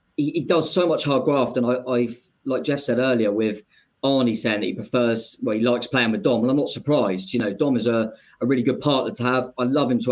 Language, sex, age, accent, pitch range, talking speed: English, male, 20-39, British, 115-135 Hz, 275 wpm